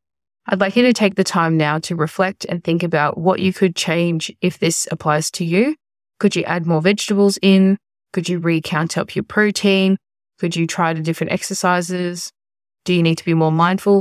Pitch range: 155-185 Hz